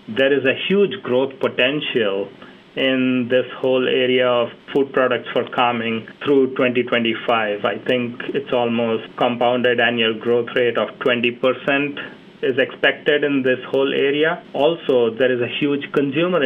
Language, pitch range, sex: English, 120-145 Hz, male